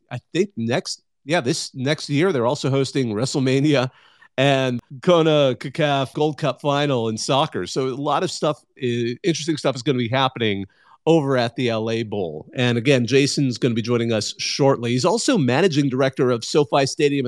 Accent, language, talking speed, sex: American, English, 185 wpm, male